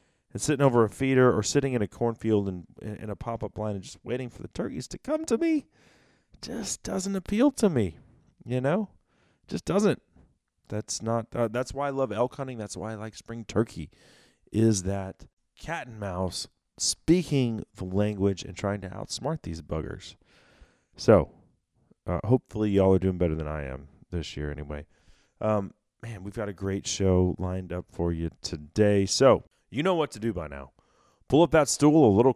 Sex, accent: male, American